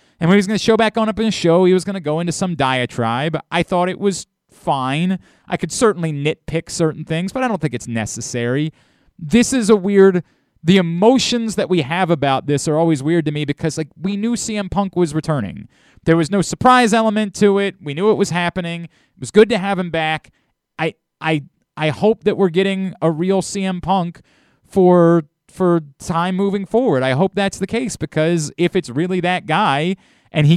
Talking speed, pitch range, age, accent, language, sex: 215 wpm, 155-200 Hz, 30-49, American, English, male